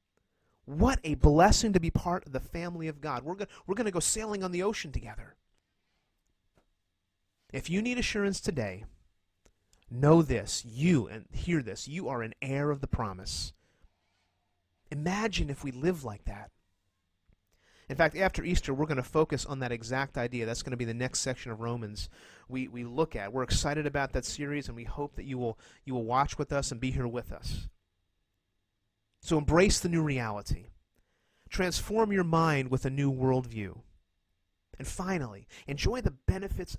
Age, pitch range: 30-49, 95-145 Hz